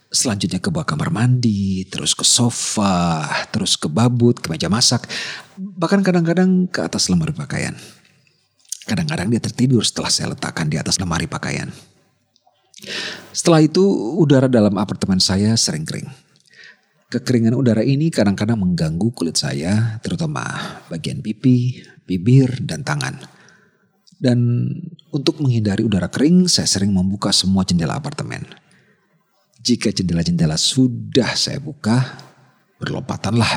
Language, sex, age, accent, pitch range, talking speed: Indonesian, male, 40-59, native, 110-155 Hz, 120 wpm